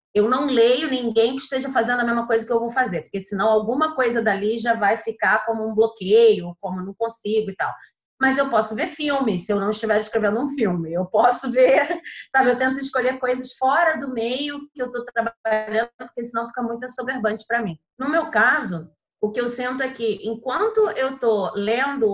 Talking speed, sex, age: 210 wpm, female, 30-49